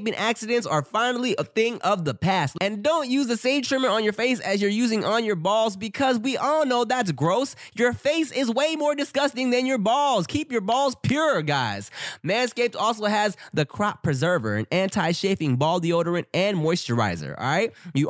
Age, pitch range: 20-39, 140-225 Hz